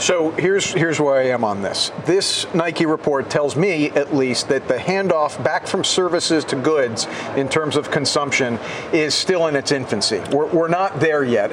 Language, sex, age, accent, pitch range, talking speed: English, male, 50-69, American, 145-190 Hz, 195 wpm